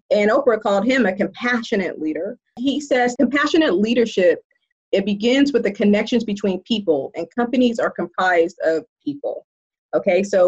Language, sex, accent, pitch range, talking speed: English, female, American, 180-245 Hz, 150 wpm